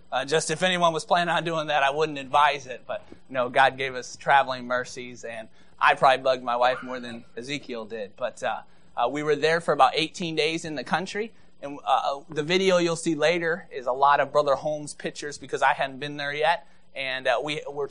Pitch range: 130-165 Hz